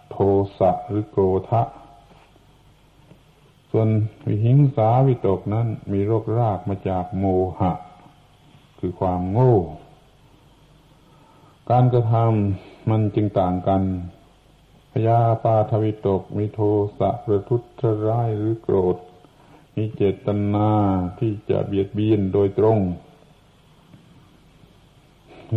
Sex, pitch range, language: male, 100-130 Hz, Thai